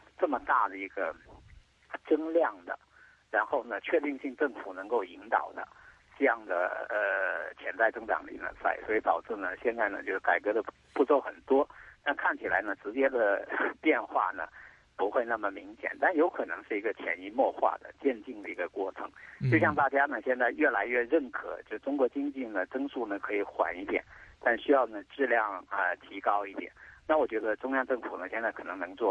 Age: 50-69